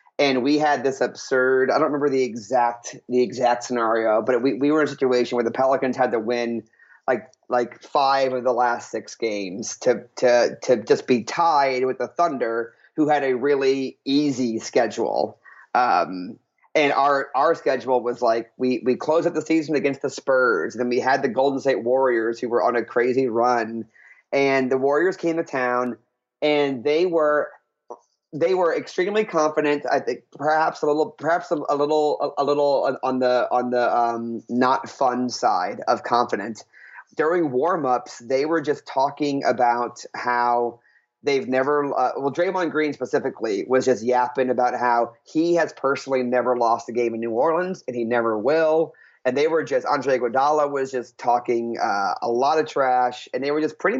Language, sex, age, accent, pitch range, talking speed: English, male, 30-49, American, 125-150 Hz, 185 wpm